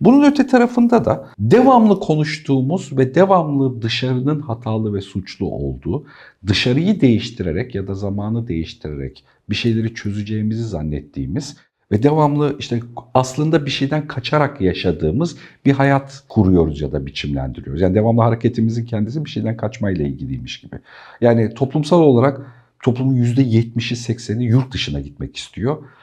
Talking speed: 130 wpm